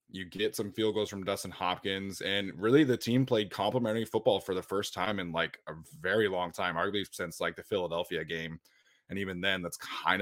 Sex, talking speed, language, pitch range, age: male, 210 wpm, English, 90-105 Hz, 20-39